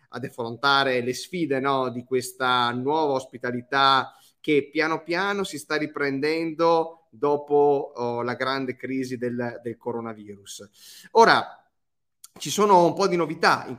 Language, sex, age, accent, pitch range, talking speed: Italian, male, 30-49, native, 130-155 Hz, 120 wpm